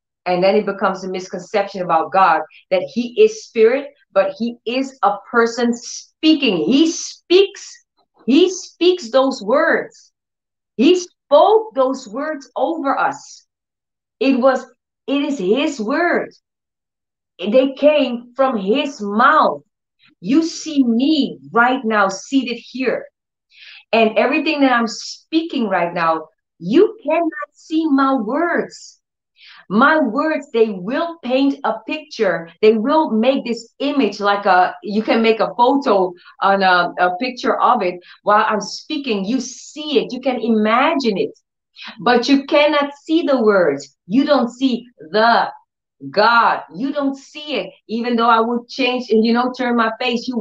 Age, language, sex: 40-59, English, female